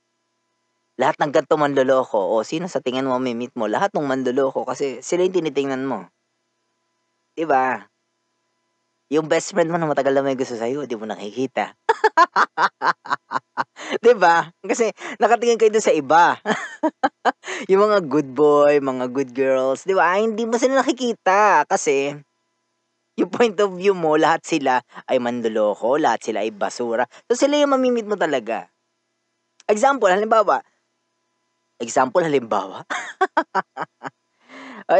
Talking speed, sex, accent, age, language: 145 wpm, female, native, 20-39, Filipino